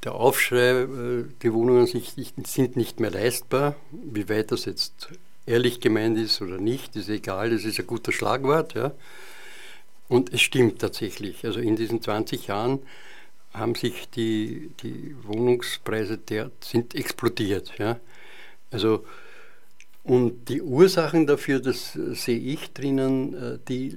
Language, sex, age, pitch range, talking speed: German, male, 70-89, 110-130 Hz, 120 wpm